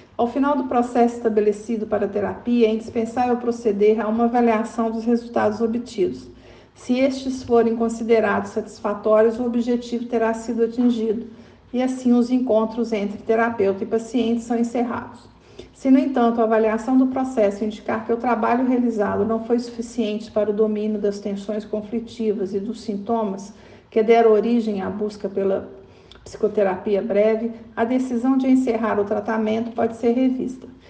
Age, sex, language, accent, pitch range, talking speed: 50-69, female, Portuguese, Brazilian, 215-240 Hz, 155 wpm